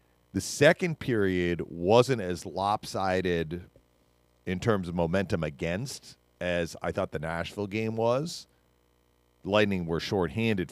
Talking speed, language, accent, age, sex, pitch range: 125 wpm, English, American, 40-59, male, 75-95 Hz